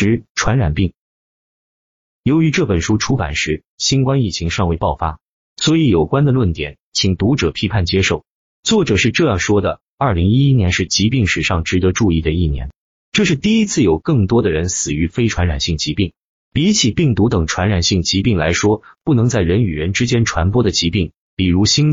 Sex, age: male, 30-49